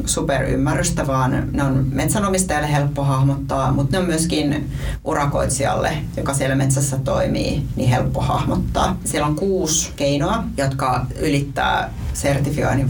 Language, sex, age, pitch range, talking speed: Finnish, female, 30-49, 130-145 Hz, 120 wpm